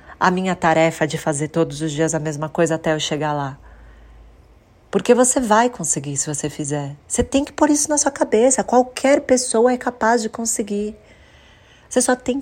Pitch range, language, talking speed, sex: 160-215 Hz, Portuguese, 190 wpm, female